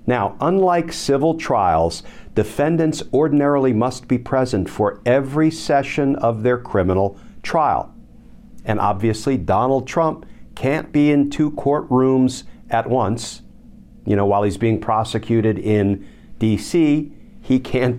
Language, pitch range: English, 105-145 Hz